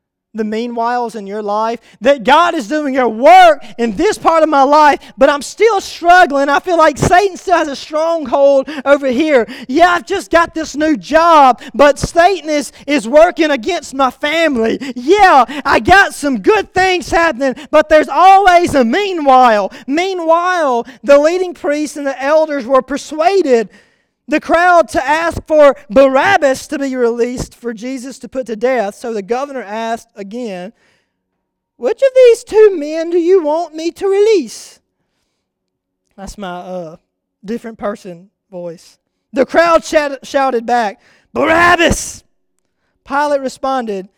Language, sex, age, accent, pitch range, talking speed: English, male, 20-39, American, 240-335 Hz, 150 wpm